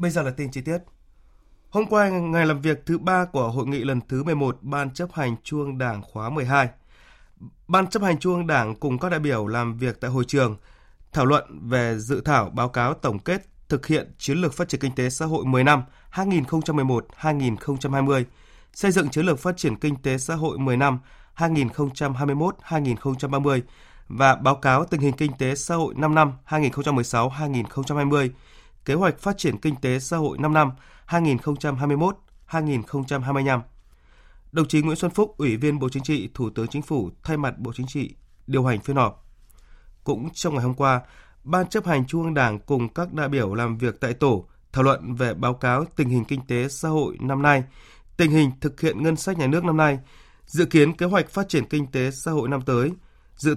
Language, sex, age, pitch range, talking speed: Vietnamese, male, 20-39, 130-155 Hz, 200 wpm